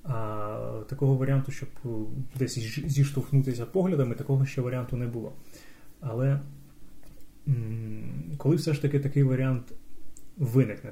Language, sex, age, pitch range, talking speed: Ukrainian, male, 30-49, 120-140 Hz, 110 wpm